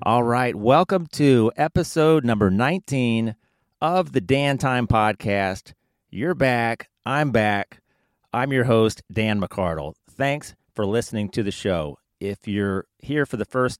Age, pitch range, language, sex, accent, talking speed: 30-49, 100-120 Hz, English, male, American, 145 wpm